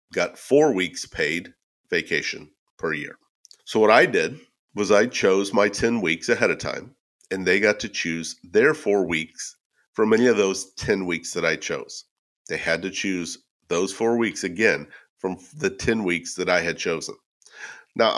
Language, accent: English, American